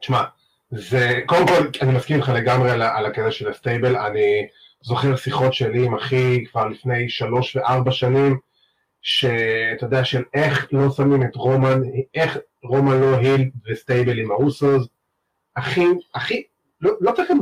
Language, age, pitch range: Hebrew, 30-49, 125-150 Hz